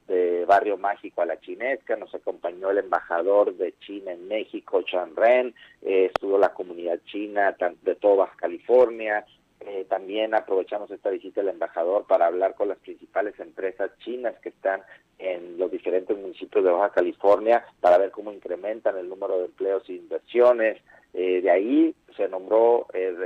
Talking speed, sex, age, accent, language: 160 wpm, male, 50-69, Mexican, Spanish